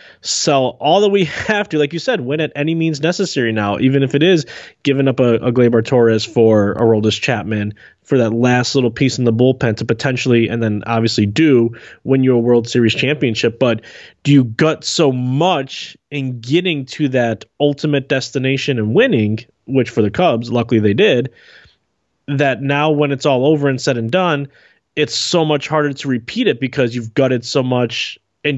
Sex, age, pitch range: male, 20-39, 115-145 Hz